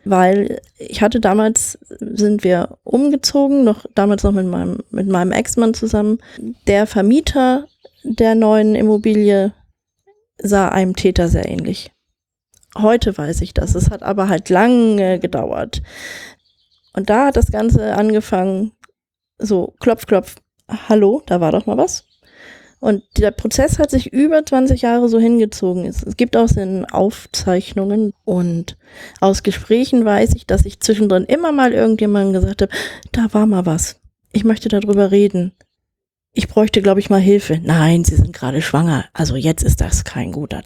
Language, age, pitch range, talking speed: German, 30-49, 185-225 Hz, 155 wpm